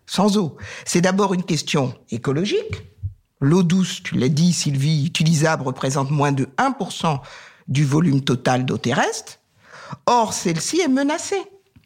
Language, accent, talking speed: French, French, 135 wpm